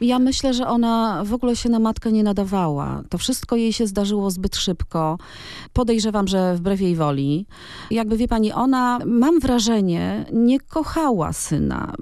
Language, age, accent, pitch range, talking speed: Polish, 40-59, native, 165-235 Hz, 160 wpm